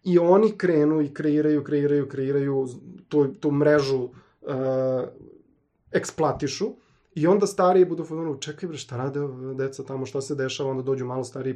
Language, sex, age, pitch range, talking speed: Croatian, male, 30-49, 135-165 Hz, 155 wpm